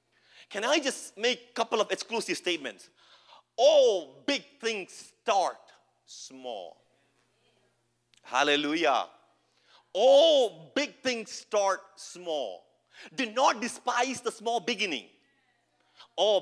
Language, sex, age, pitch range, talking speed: English, male, 40-59, 200-275 Hz, 100 wpm